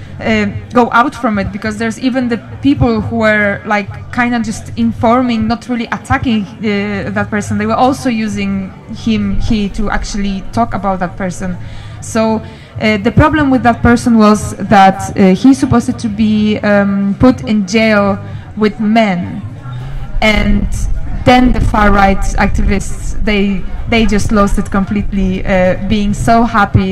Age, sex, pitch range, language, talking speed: 20-39, female, 190-225 Hz, Danish, 160 wpm